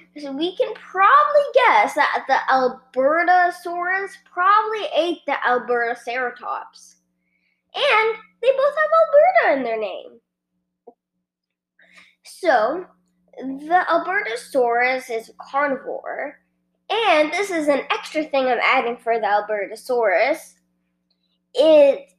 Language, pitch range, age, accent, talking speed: English, 215-330 Hz, 20-39, American, 105 wpm